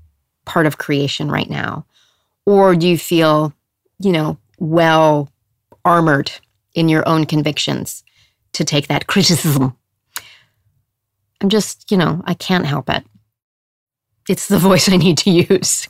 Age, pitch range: 40-59, 150-210 Hz